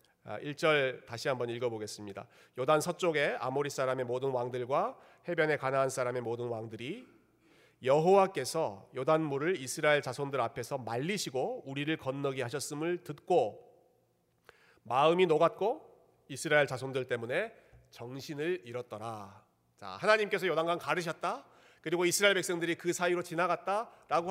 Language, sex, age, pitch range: Korean, male, 40-59, 125-180 Hz